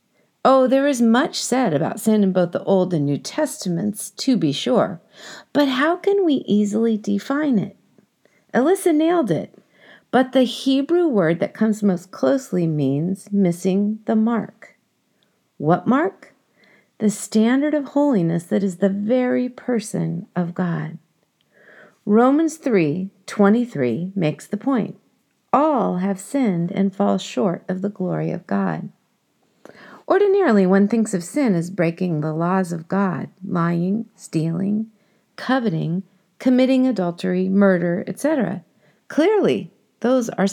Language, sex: English, female